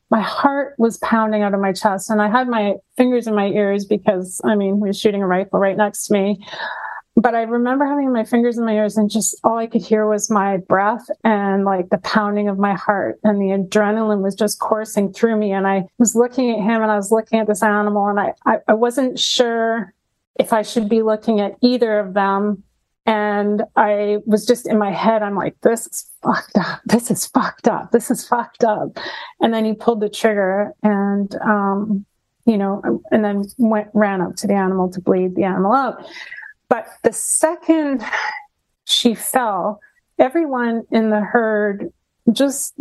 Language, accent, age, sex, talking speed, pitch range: English, American, 30-49, female, 200 wpm, 205-235 Hz